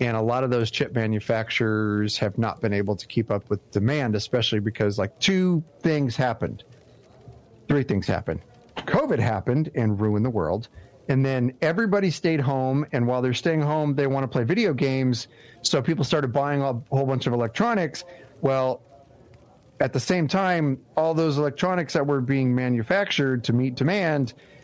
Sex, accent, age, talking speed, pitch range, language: male, American, 40-59, 175 wpm, 110-140 Hz, English